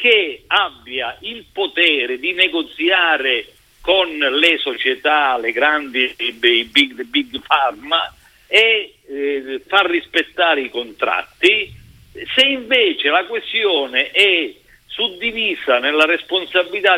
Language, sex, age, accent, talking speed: Italian, male, 50-69, native, 105 wpm